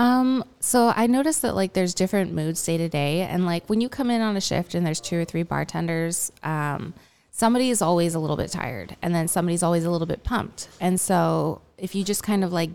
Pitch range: 165-195 Hz